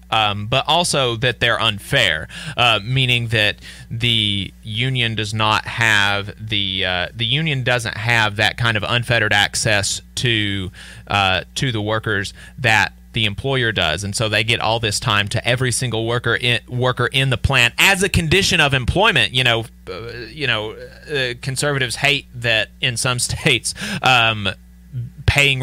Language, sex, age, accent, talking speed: English, male, 30-49, American, 160 wpm